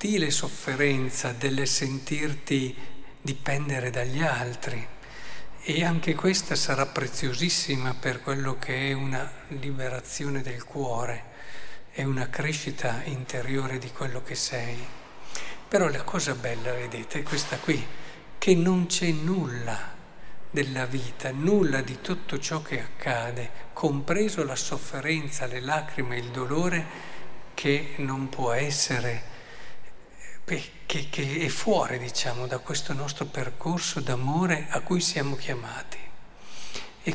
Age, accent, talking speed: 50-69, native, 120 wpm